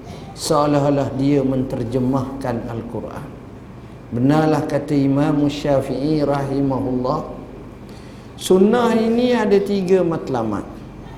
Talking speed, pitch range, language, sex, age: 75 wpm, 130-170 Hz, Malay, male, 50-69